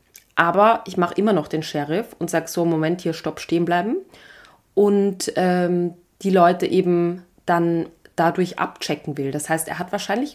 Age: 30-49